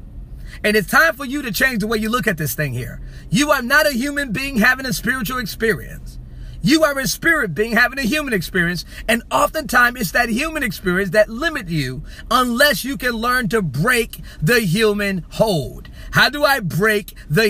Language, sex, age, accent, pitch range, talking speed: English, male, 40-59, American, 185-270 Hz, 195 wpm